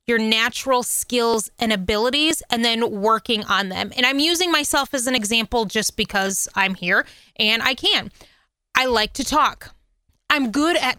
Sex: female